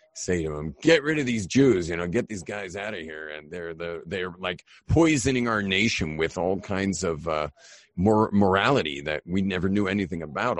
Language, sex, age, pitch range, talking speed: English, male, 50-69, 80-100 Hz, 210 wpm